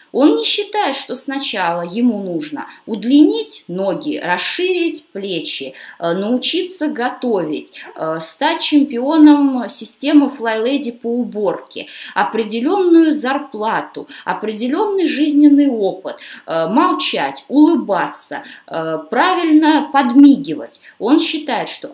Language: Russian